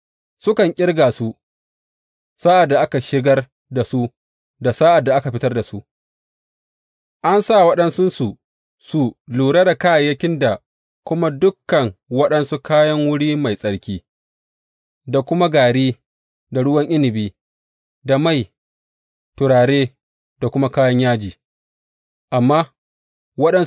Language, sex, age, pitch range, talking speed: English, male, 30-49, 110-150 Hz, 120 wpm